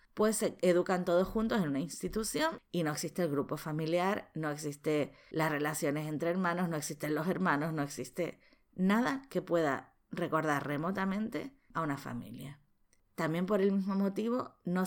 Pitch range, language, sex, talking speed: 145-210 Hz, Spanish, female, 160 wpm